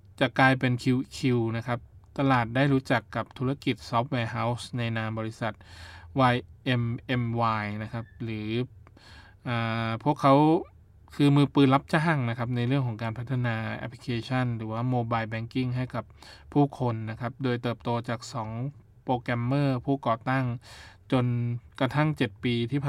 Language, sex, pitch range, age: Thai, male, 115-130 Hz, 20-39